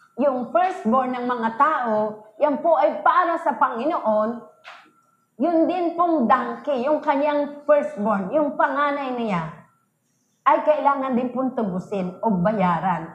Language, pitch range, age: English, 220-300 Hz, 30-49